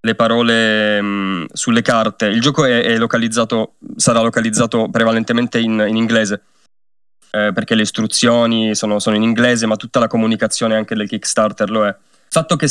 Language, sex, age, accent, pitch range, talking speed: Italian, male, 20-39, native, 110-130 Hz, 170 wpm